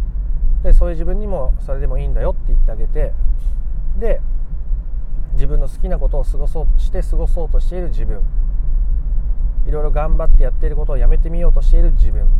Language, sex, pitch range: Japanese, male, 115-160 Hz